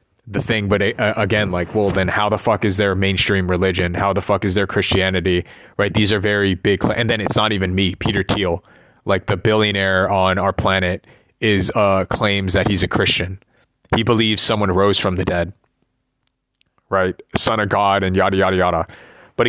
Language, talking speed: English, 200 wpm